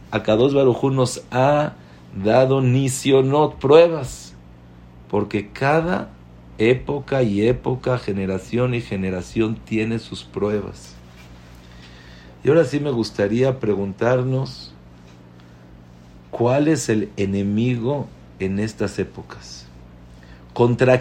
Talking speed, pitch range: 95 wpm, 85-130 Hz